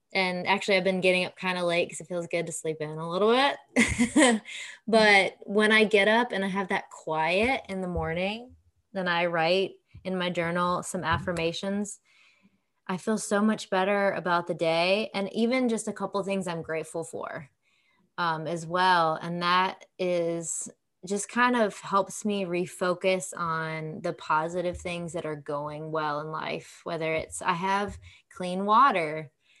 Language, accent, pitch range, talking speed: English, American, 165-195 Hz, 175 wpm